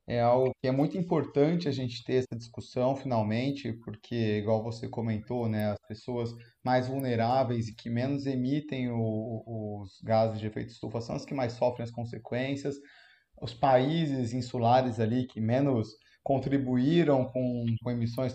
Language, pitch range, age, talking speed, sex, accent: Portuguese, 115-140 Hz, 20-39, 155 wpm, male, Brazilian